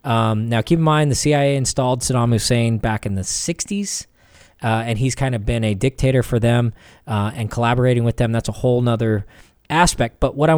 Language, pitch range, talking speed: English, 115-160 Hz, 205 wpm